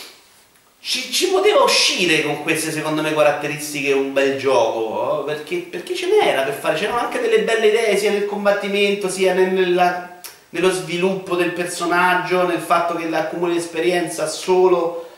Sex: male